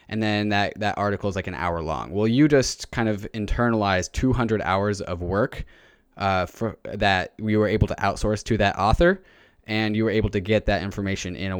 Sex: male